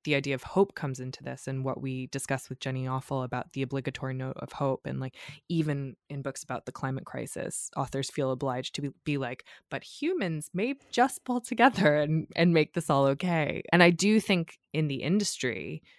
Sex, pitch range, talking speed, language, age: female, 130-160 Hz, 205 wpm, English, 20-39